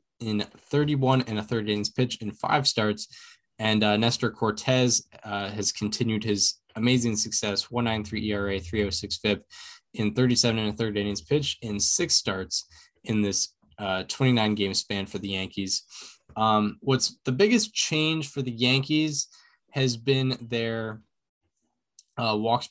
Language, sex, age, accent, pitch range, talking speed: English, male, 10-29, American, 105-130 Hz, 150 wpm